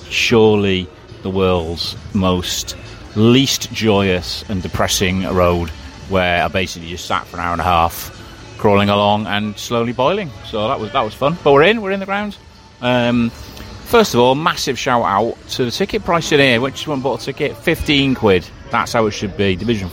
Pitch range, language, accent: 100-125 Hz, English, British